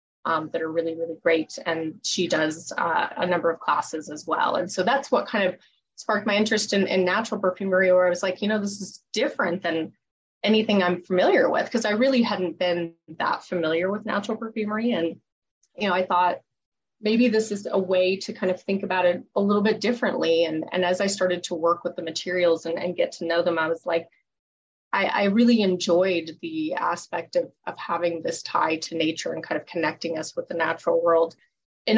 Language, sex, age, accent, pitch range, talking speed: English, female, 20-39, American, 170-210 Hz, 215 wpm